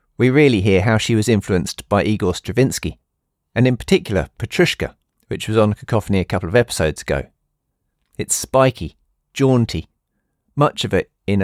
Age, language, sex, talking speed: 40-59, English, male, 155 wpm